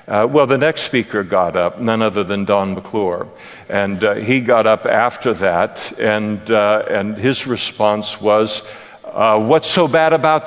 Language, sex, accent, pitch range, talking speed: English, male, American, 110-145 Hz, 170 wpm